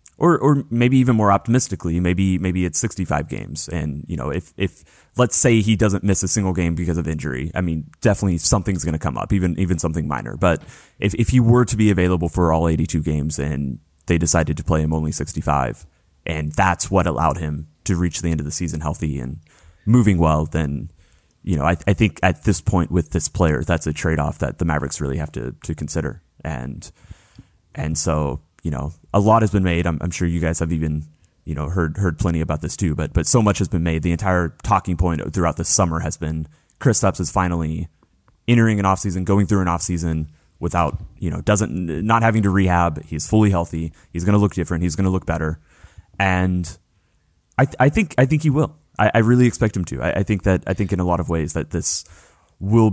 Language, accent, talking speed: English, American, 230 wpm